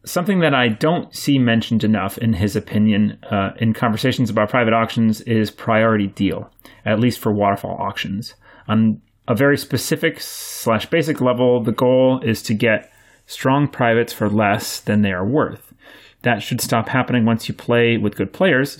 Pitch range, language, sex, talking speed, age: 105-125 Hz, English, male, 170 wpm, 30-49